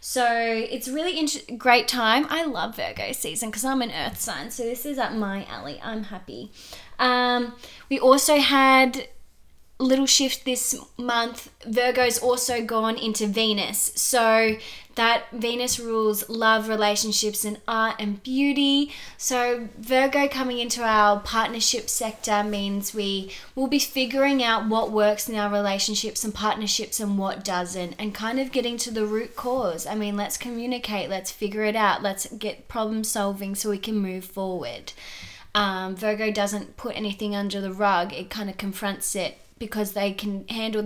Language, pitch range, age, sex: English, 205-245 Hz, 20-39, female